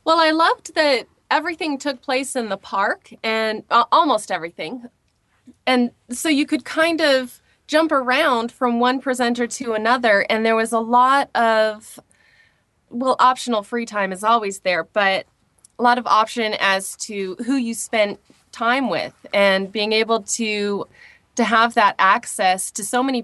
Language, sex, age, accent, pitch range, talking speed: English, female, 20-39, American, 190-245 Hz, 165 wpm